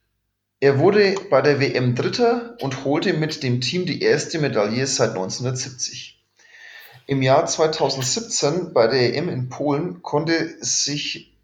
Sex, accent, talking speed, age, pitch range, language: male, German, 135 wpm, 30-49, 125-160 Hz, German